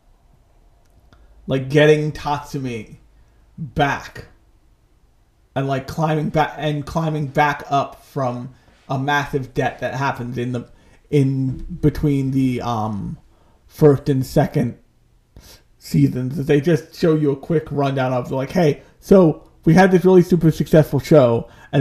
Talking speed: 130 wpm